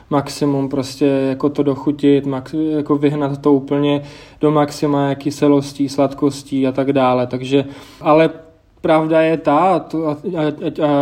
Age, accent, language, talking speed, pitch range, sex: 20-39, native, Czech, 115 wpm, 140-150 Hz, male